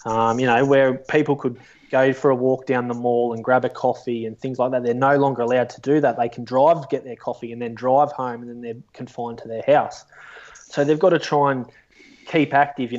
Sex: male